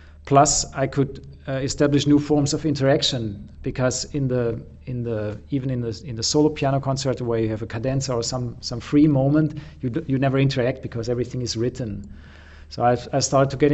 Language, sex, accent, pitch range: English, male, German, 115-140 Hz